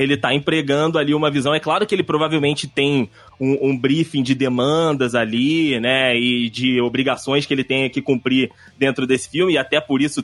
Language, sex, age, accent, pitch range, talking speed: Portuguese, male, 20-39, Brazilian, 130-170 Hz, 200 wpm